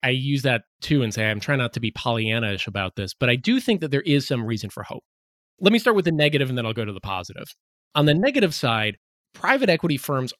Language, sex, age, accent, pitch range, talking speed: English, male, 30-49, American, 105-145 Hz, 260 wpm